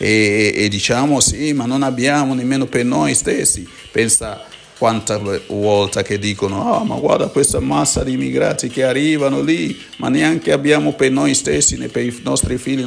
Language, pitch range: Italian, 95-130 Hz